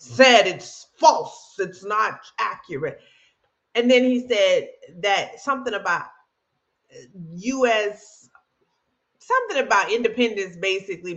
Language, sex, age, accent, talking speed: English, female, 30-49, American, 95 wpm